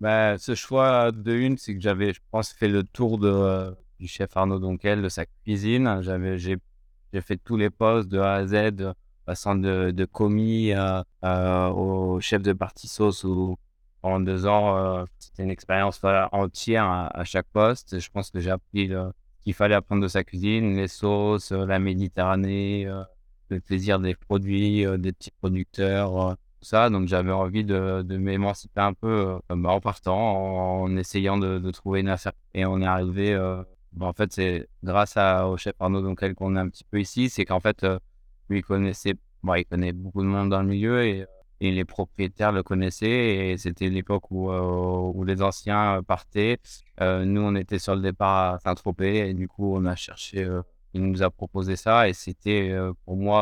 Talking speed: 205 wpm